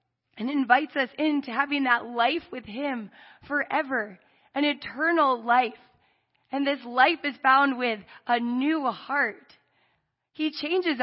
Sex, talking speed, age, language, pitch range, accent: female, 130 wpm, 20-39, English, 235-300 Hz, American